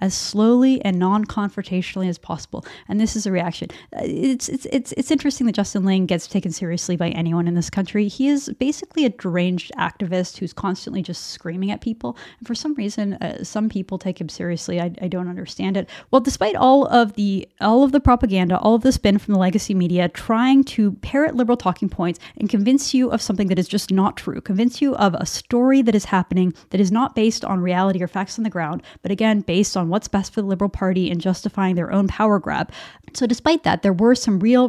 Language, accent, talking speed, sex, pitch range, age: English, American, 225 wpm, female, 185-230 Hz, 20-39